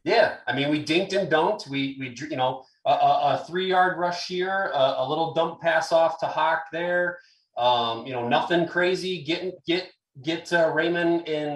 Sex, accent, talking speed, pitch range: male, American, 190 wpm, 130-165 Hz